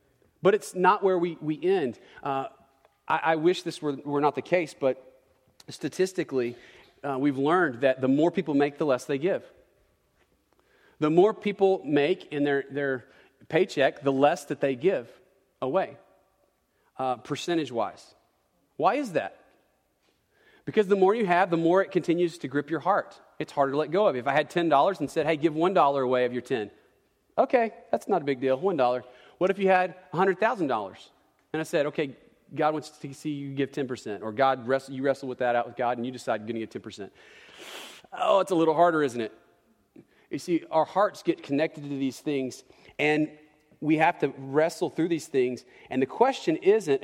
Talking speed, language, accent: 190 wpm, English, American